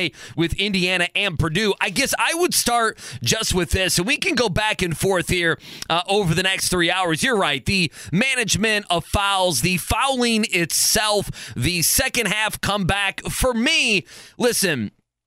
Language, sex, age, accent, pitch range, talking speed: English, male, 30-49, American, 175-215 Hz, 165 wpm